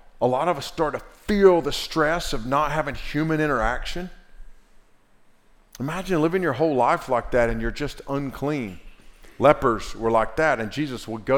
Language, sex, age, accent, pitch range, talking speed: English, male, 40-59, American, 120-160 Hz, 175 wpm